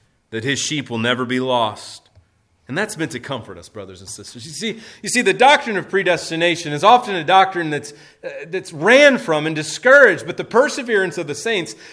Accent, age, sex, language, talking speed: American, 30-49, male, English, 200 wpm